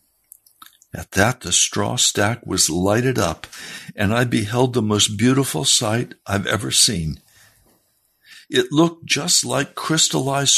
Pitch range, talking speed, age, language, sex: 110-140 Hz, 130 wpm, 60-79, English, male